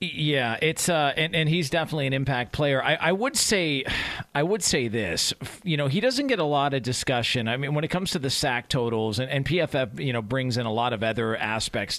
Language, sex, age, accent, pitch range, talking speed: English, male, 40-59, American, 120-160 Hz, 240 wpm